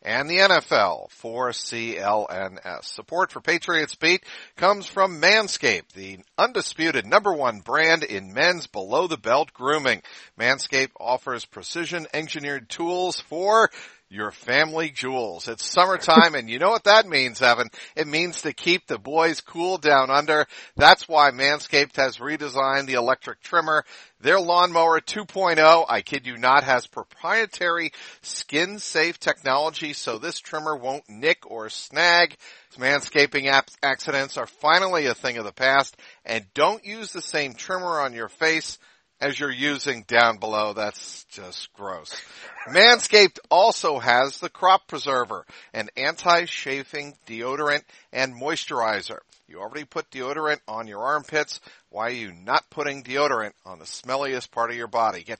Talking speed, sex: 145 wpm, male